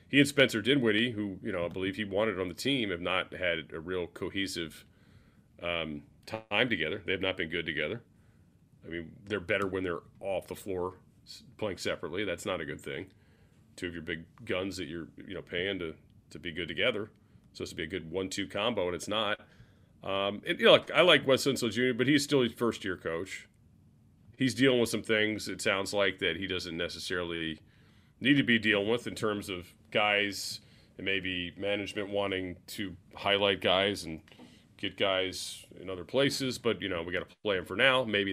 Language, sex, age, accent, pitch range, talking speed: English, male, 30-49, American, 95-110 Hz, 205 wpm